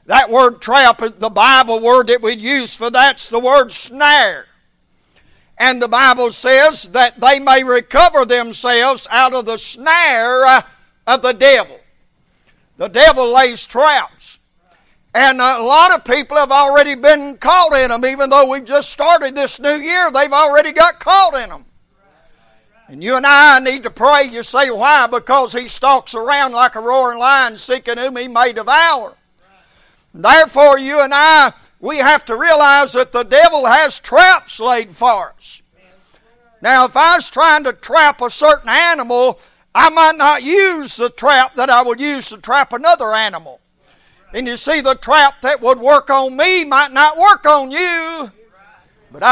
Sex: male